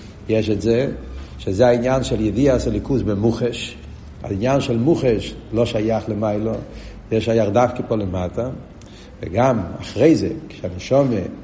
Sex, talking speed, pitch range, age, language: male, 120 wpm, 110-150 Hz, 70-89, Hebrew